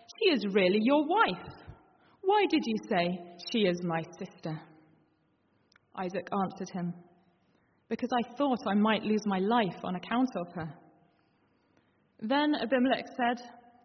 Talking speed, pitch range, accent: 130 wpm, 180-250 Hz, British